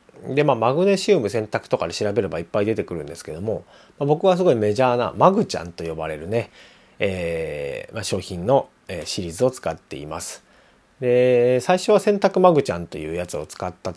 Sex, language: male, Japanese